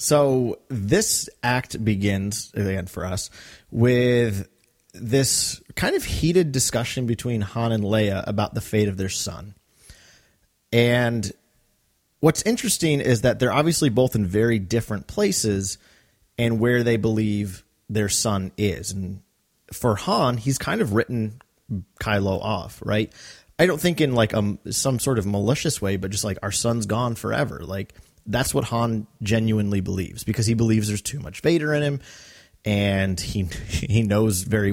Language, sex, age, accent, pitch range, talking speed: English, male, 30-49, American, 100-125 Hz, 155 wpm